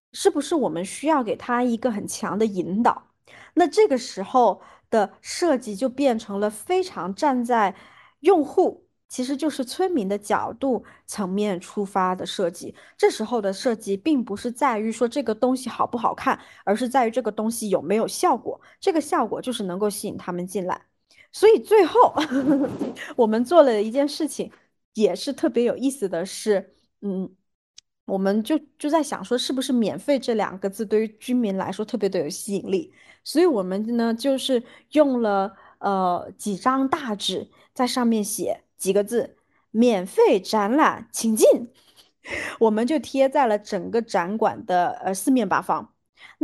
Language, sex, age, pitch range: Chinese, female, 20-39, 205-285 Hz